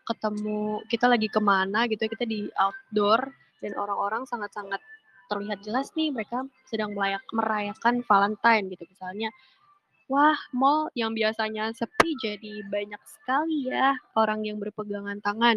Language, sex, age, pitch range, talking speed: Indonesian, female, 20-39, 205-240 Hz, 125 wpm